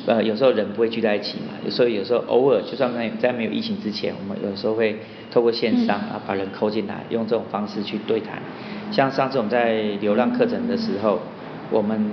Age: 40-59